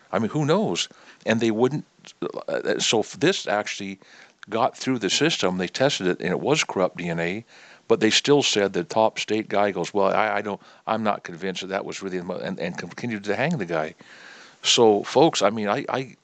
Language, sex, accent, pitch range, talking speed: English, male, American, 90-105 Hz, 210 wpm